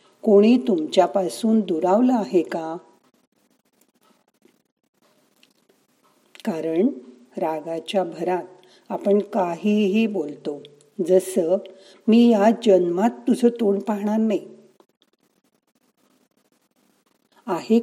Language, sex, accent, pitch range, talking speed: Marathi, female, native, 175-230 Hz, 65 wpm